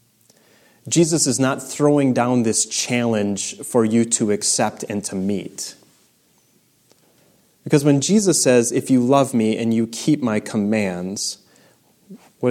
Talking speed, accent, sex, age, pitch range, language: 135 wpm, American, male, 30-49, 110-130 Hz, English